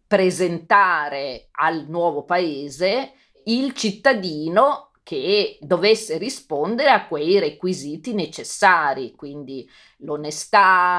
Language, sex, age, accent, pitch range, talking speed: Italian, female, 40-59, native, 150-200 Hz, 80 wpm